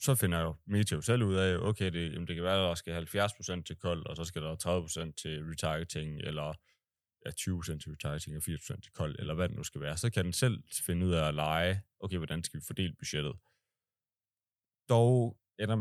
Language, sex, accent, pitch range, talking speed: Danish, male, native, 80-100 Hz, 220 wpm